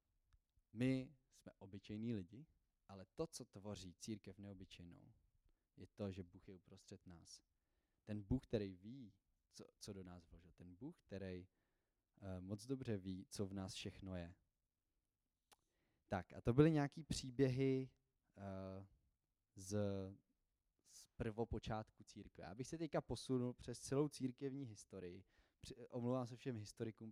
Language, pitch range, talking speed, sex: Czech, 100-130 Hz, 140 wpm, male